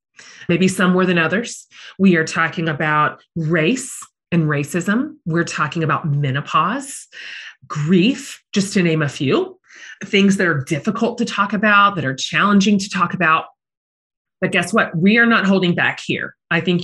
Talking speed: 165 wpm